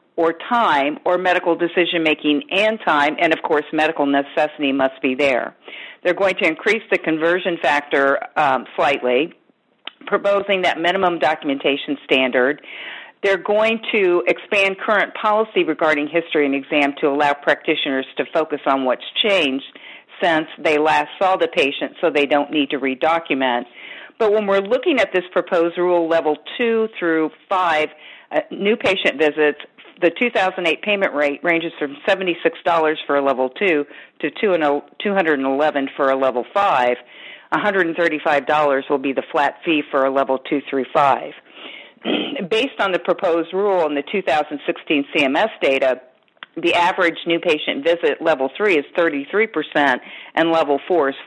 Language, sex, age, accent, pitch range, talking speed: English, female, 50-69, American, 145-185 Hz, 145 wpm